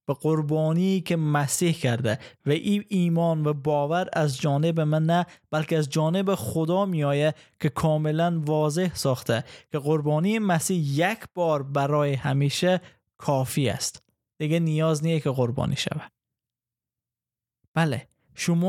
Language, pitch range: Persian, 135-170 Hz